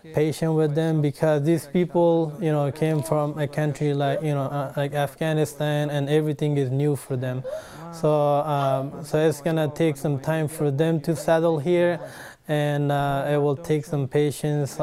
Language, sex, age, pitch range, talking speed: English, male, 20-39, 140-155 Hz, 180 wpm